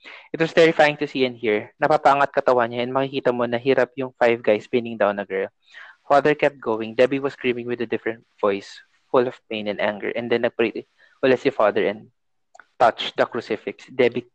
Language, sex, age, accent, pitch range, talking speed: English, male, 20-39, Filipino, 110-135 Hz, 190 wpm